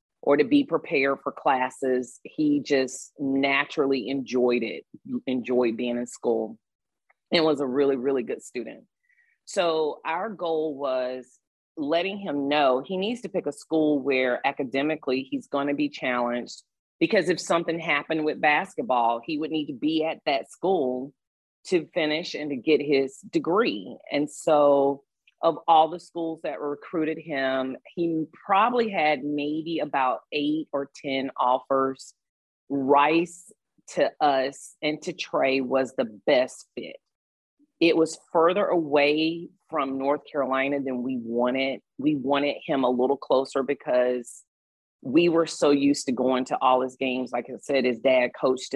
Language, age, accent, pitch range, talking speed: English, 40-59, American, 130-160 Hz, 155 wpm